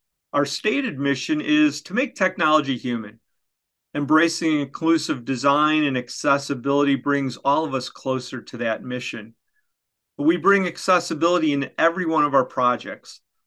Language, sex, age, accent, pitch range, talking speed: English, male, 40-59, American, 130-170 Hz, 135 wpm